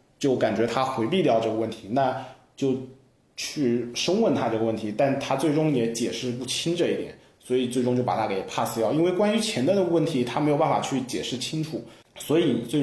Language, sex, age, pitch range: Chinese, male, 20-39, 115-140 Hz